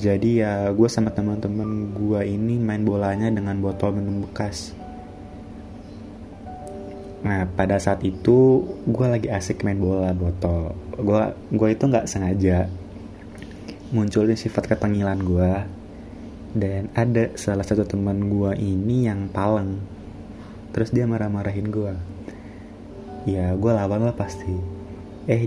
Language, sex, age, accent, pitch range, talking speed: Indonesian, male, 20-39, native, 95-110 Hz, 120 wpm